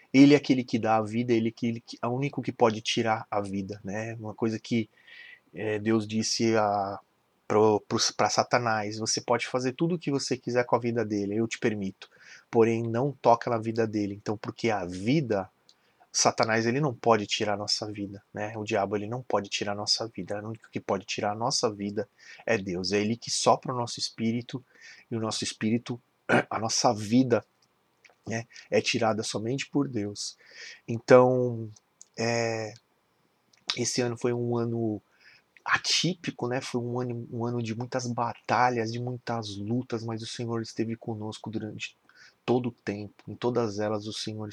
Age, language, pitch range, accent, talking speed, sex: 30-49, Portuguese, 105-120 Hz, Brazilian, 175 wpm, male